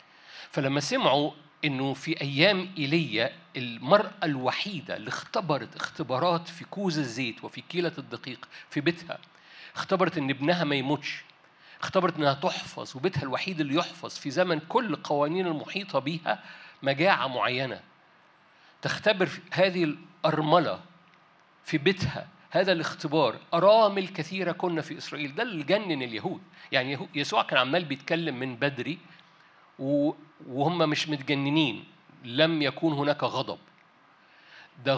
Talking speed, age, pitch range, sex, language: 120 wpm, 50-69, 145-185 Hz, male, Arabic